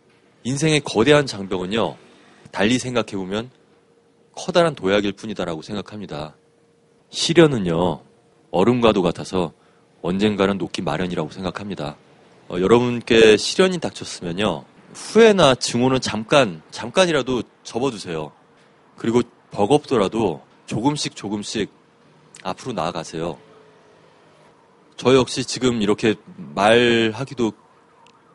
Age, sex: 30-49, male